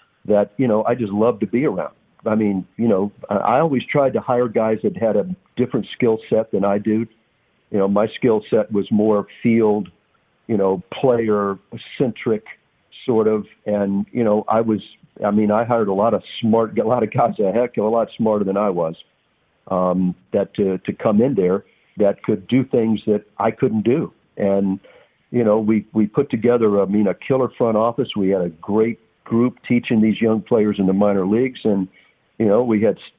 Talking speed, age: 205 wpm, 50-69